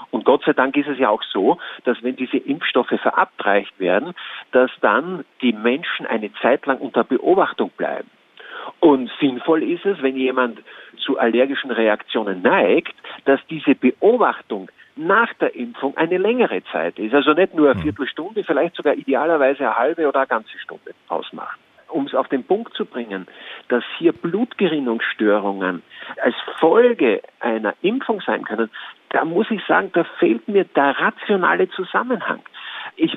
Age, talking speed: 50-69, 155 wpm